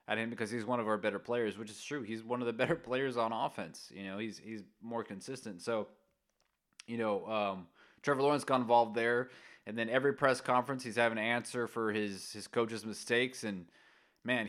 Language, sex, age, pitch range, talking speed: English, male, 20-39, 105-125 Hz, 210 wpm